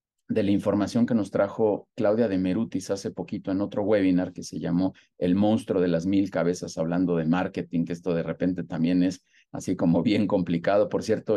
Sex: male